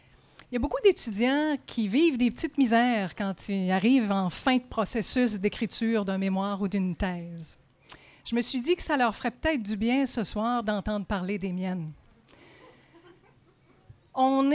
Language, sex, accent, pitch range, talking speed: French, female, Canadian, 210-285 Hz, 170 wpm